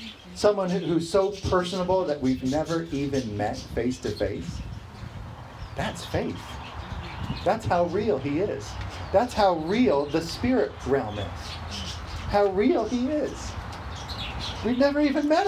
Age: 40-59